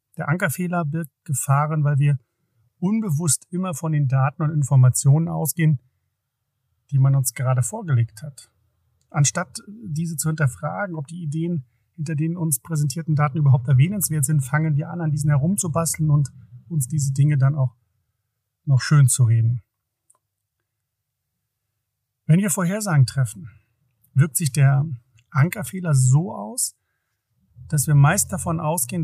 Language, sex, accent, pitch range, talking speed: German, male, German, 120-150 Hz, 135 wpm